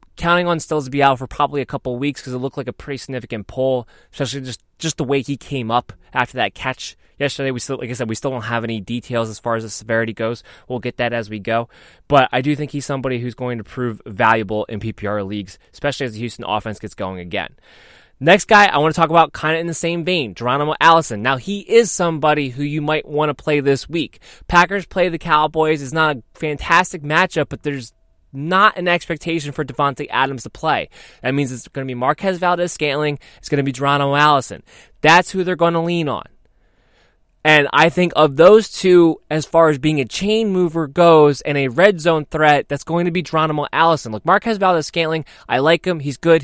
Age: 20-39